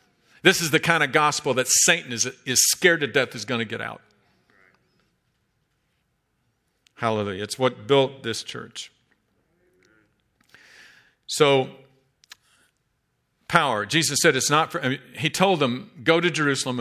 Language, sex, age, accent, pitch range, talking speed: English, male, 50-69, American, 115-145 Hz, 140 wpm